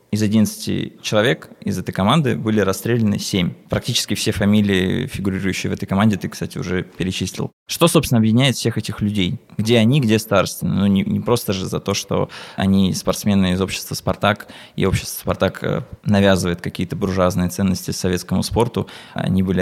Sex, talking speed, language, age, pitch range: male, 165 wpm, Russian, 20-39, 95-115 Hz